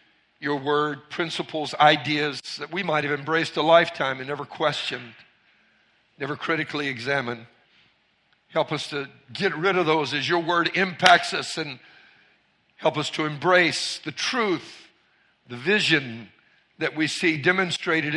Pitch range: 140-170 Hz